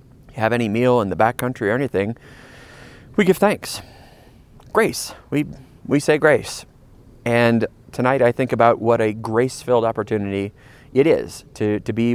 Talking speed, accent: 155 wpm, American